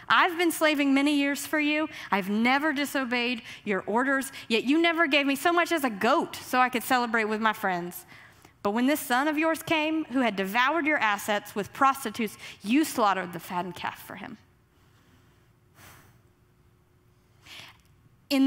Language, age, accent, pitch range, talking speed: English, 30-49, American, 185-275 Hz, 165 wpm